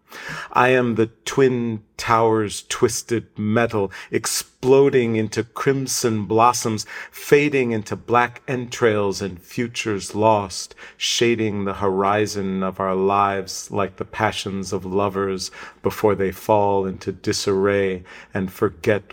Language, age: English, 40-59